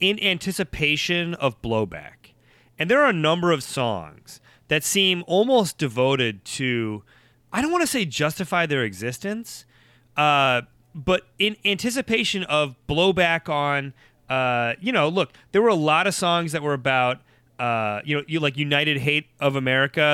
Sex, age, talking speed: male, 30-49, 150 wpm